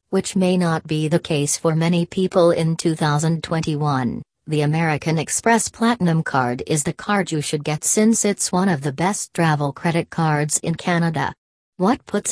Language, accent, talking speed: English, American, 170 wpm